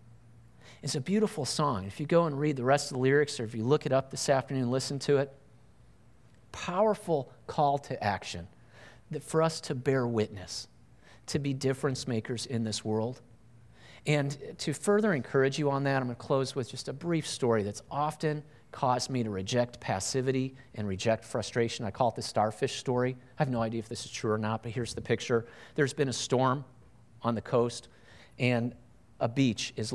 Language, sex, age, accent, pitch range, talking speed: English, male, 40-59, American, 115-140 Hz, 200 wpm